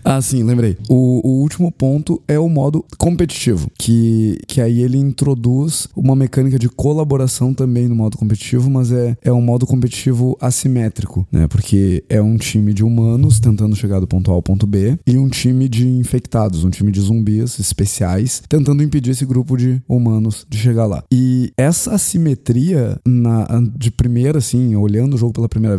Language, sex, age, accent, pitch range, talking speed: Portuguese, male, 20-39, Brazilian, 105-130 Hz, 175 wpm